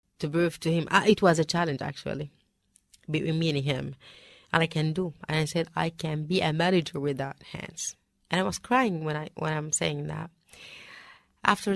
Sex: female